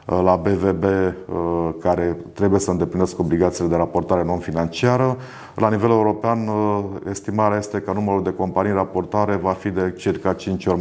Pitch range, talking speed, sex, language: 85-100 Hz, 145 wpm, male, Romanian